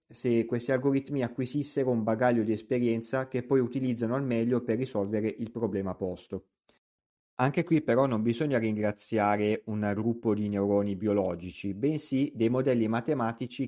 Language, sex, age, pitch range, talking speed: Italian, male, 30-49, 105-125 Hz, 145 wpm